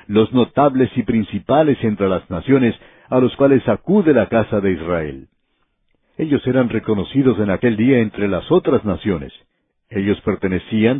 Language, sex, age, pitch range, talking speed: Spanish, male, 60-79, 100-135 Hz, 145 wpm